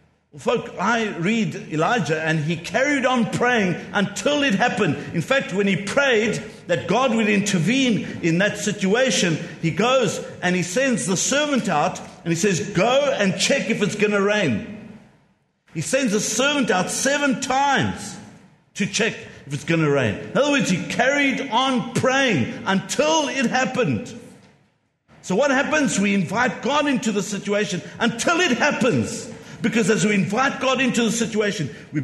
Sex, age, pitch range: male, 50-69, 145-225 Hz